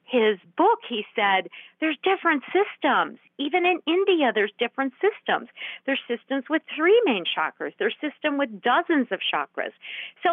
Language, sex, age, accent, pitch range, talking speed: English, female, 50-69, American, 200-290 Hz, 150 wpm